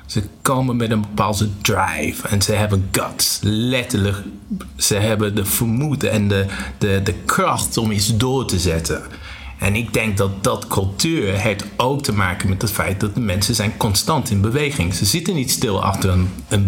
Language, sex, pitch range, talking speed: Dutch, male, 100-115 Hz, 185 wpm